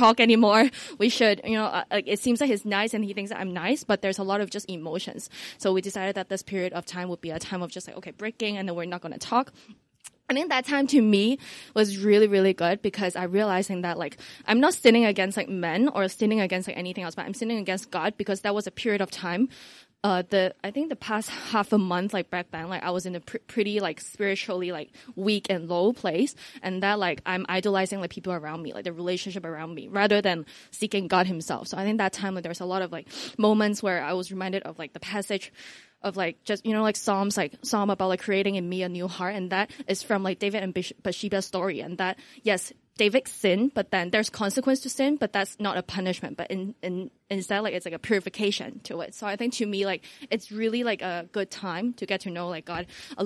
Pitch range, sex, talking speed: 185-215 Hz, female, 250 wpm